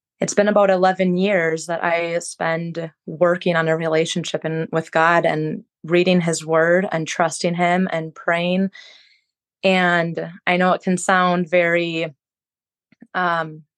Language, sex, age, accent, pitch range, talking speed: English, female, 20-39, American, 170-190 Hz, 140 wpm